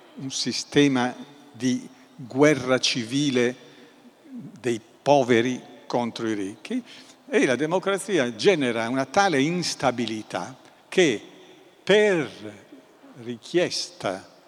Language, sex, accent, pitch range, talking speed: Italian, male, native, 120-170 Hz, 85 wpm